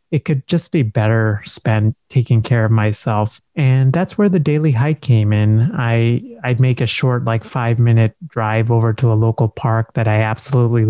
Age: 30-49